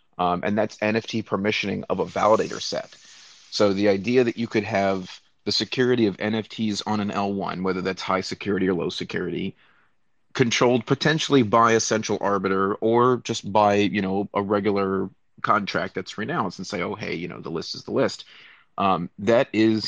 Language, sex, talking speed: English, male, 180 wpm